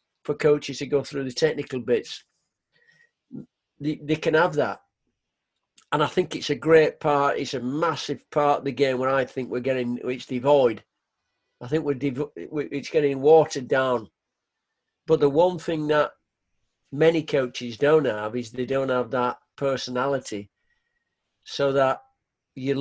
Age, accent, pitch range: 50-69, British, 125-155 Hz